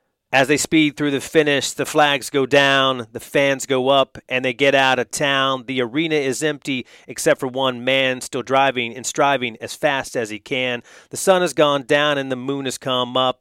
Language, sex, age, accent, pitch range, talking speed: English, male, 30-49, American, 130-155 Hz, 215 wpm